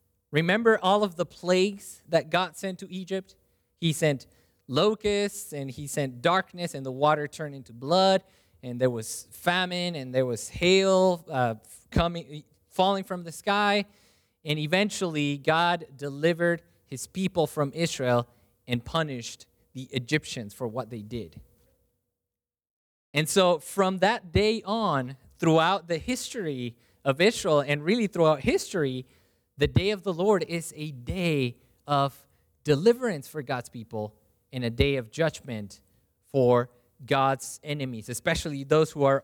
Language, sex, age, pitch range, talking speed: English, male, 20-39, 125-190 Hz, 140 wpm